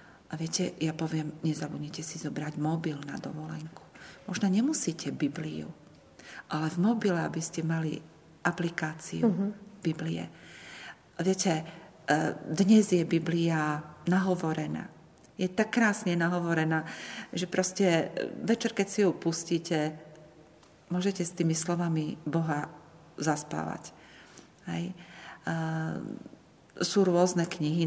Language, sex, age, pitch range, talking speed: Slovak, female, 40-59, 155-180 Hz, 100 wpm